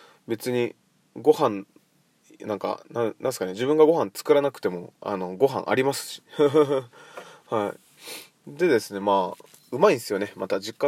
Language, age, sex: Japanese, 20-39, male